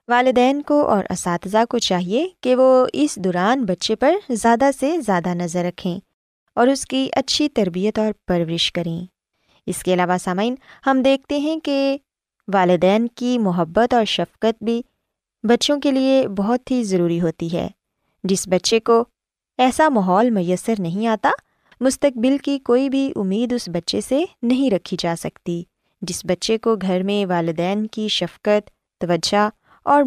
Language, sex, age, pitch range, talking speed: Urdu, female, 20-39, 185-255 Hz, 155 wpm